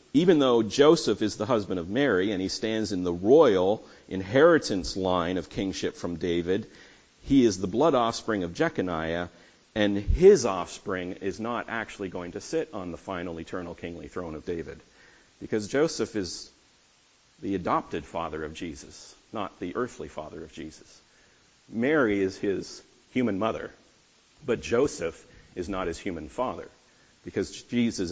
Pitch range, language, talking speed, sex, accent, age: 90-115 Hz, English, 155 wpm, male, American, 40-59